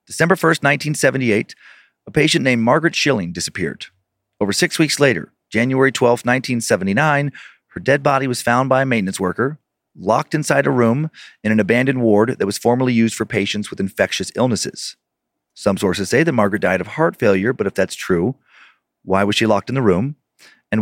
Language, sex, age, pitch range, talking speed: English, male, 40-59, 105-135 Hz, 180 wpm